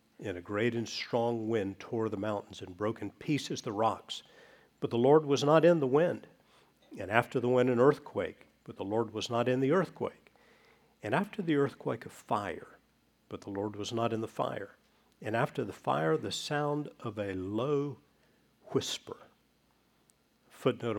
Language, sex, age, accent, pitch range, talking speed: English, male, 50-69, American, 110-145 Hz, 175 wpm